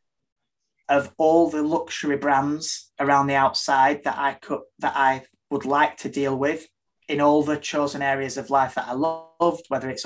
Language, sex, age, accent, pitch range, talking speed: English, male, 20-39, British, 140-155 Hz, 180 wpm